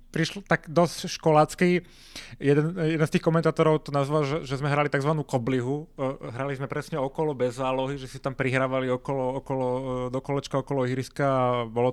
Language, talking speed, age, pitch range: Slovak, 150 wpm, 30-49, 125-145 Hz